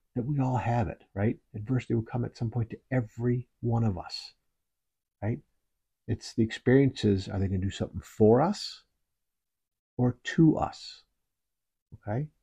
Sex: male